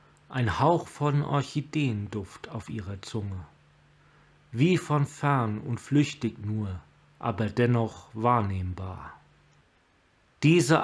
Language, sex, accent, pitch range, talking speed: German, male, German, 110-145 Hz, 95 wpm